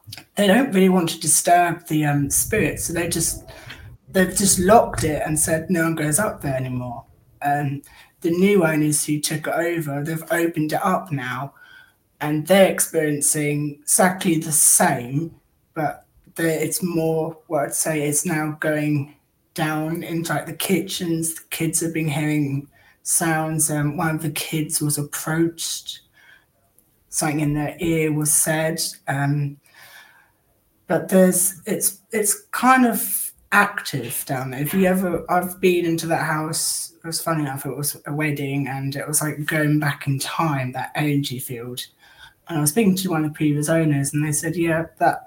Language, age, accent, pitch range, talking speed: English, 20-39, British, 145-165 Hz, 170 wpm